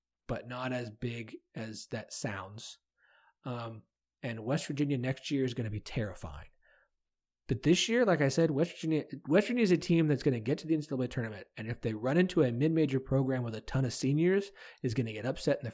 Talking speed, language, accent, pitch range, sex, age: 225 wpm, English, American, 120-160 Hz, male, 30-49